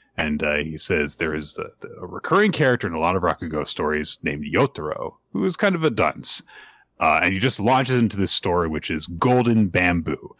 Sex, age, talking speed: male, 30-49, 210 wpm